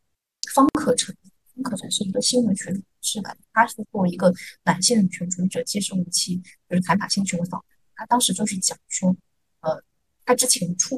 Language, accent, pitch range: Chinese, native, 180-245 Hz